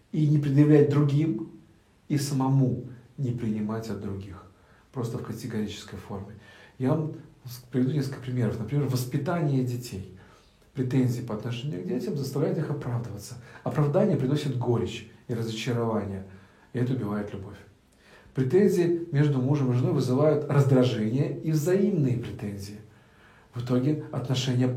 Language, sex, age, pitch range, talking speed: Russian, male, 50-69, 115-150 Hz, 125 wpm